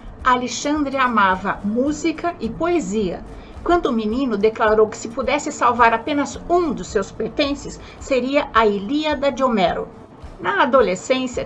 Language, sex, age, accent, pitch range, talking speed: Portuguese, female, 60-79, Brazilian, 235-320 Hz, 130 wpm